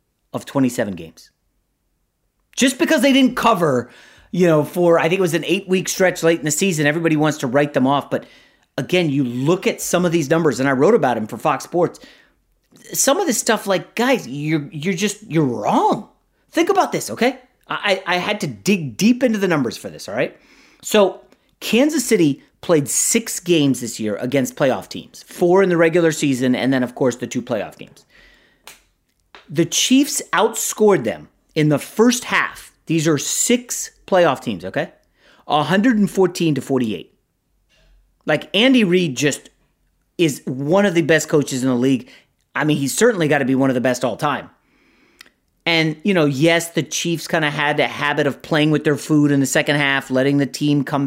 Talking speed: 195 wpm